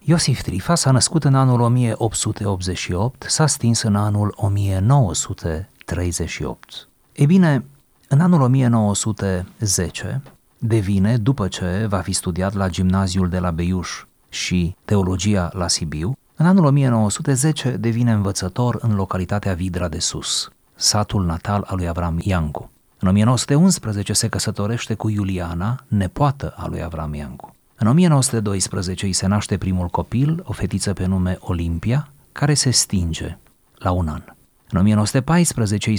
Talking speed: 130 wpm